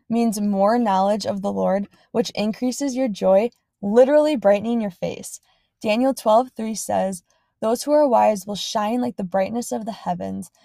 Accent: American